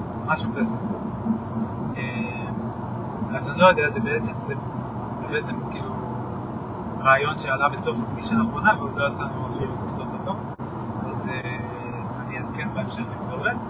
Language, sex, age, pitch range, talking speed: Hebrew, male, 30-49, 115-160 Hz, 120 wpm